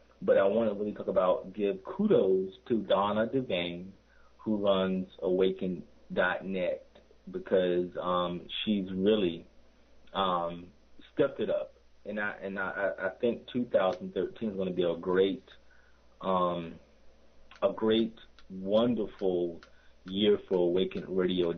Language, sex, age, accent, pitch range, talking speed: English, male, 30-49, American, 90-110 Hz, 115 wpm